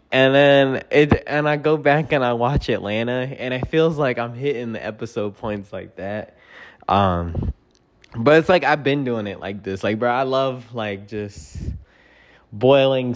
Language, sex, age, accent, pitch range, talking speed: English, male, 20-39, American, 105-135 Hz, 180 wpm